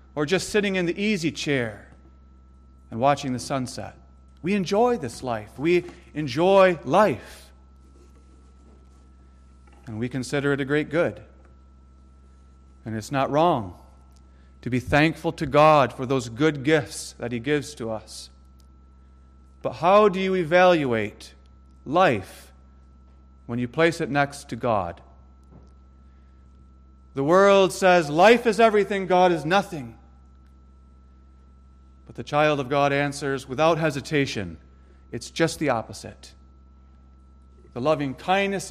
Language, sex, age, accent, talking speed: English, male, 40-59, American, 120 wpm